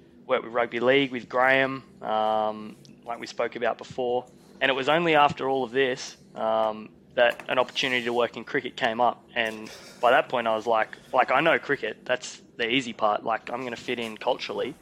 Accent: Australian